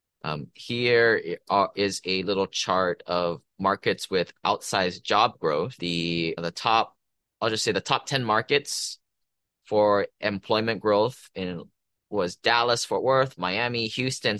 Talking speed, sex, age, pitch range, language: 135 wpm, male, 20-39, 90-110 Hz, English